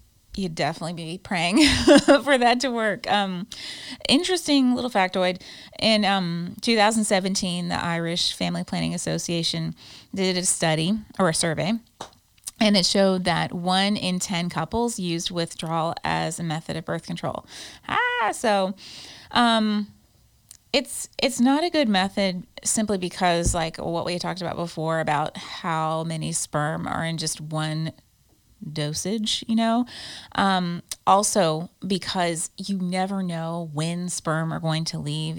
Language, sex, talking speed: English, female, 140 wpm